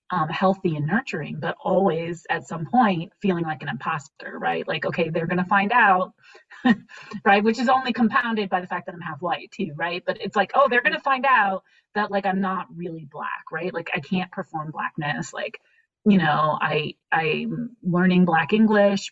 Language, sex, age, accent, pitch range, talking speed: English, female, 30-49, American, 165-200 Hz, 195 wpm